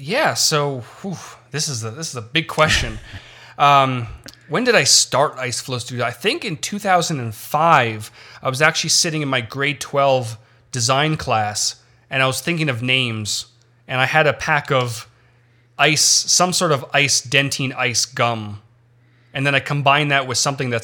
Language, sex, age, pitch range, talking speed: English, male, 30-49, 120-145 Hz, 175 wpm